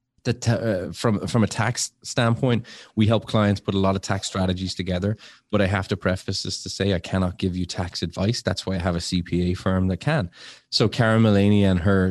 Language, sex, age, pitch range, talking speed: English, male, 20-39, 90-105 Hz, 230 wpm